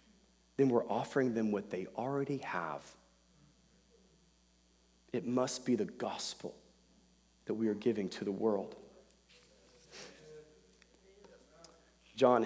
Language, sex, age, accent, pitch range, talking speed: English, male, 40-59, American, 110-150 Hz, 100 wpm